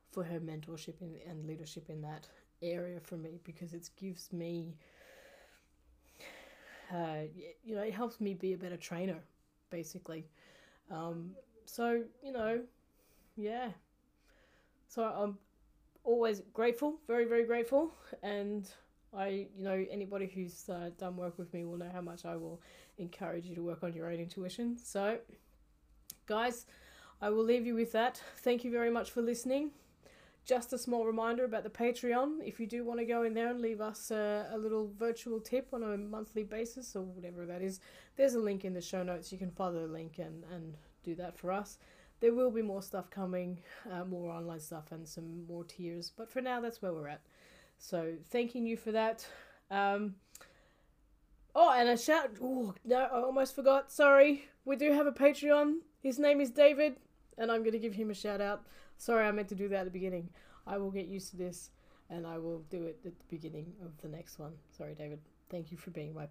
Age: 20-39